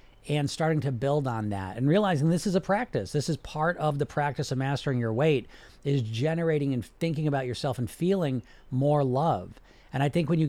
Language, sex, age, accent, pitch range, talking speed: English, male, 40-59, American, 115-155 Hz, 210 wpm